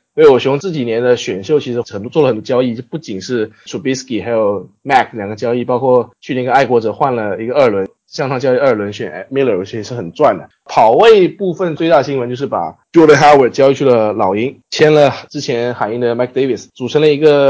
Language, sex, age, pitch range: Chinese, male, 20-39, 115-145 Hz